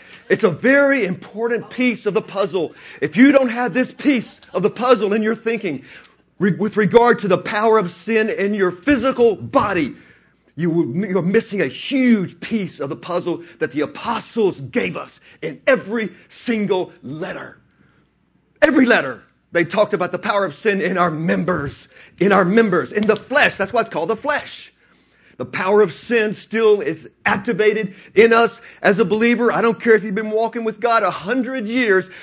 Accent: American